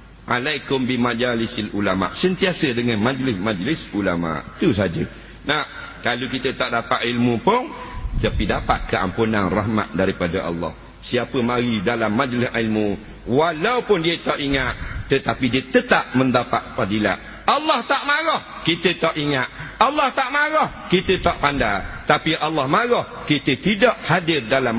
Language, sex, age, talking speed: English, male, 50-69, 135 wpm